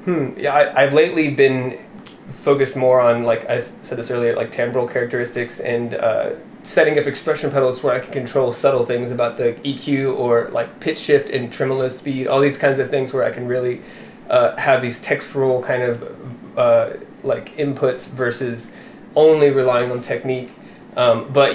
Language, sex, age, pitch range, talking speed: English, male, 20-39, 120-140 Hz, 175 wpm